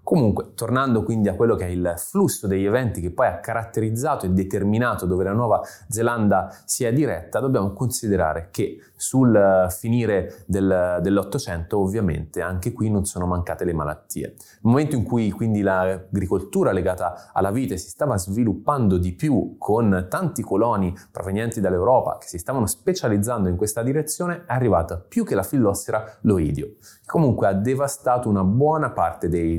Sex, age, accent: male, 20-39, native